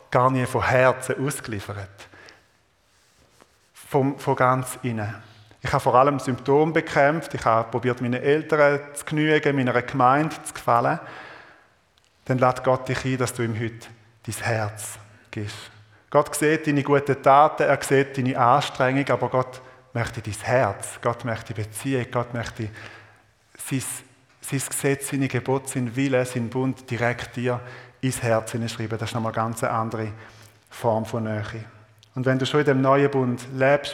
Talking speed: 155 wpm